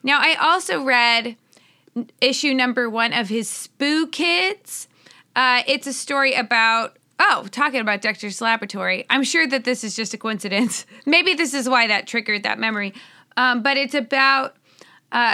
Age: 20-39